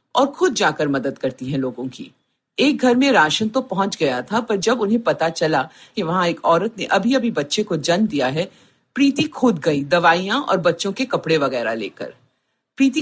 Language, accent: Hindi, native